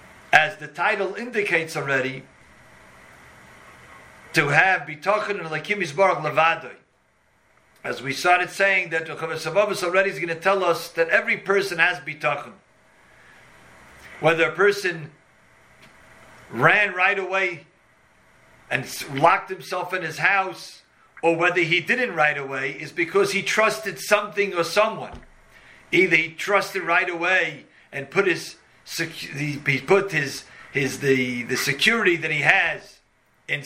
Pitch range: 160-200 Hz